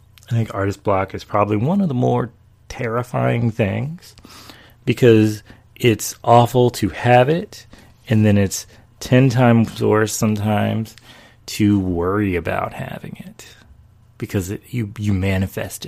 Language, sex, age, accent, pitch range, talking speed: English, male, 30-49, American, 95-115 Hz, 130 wpm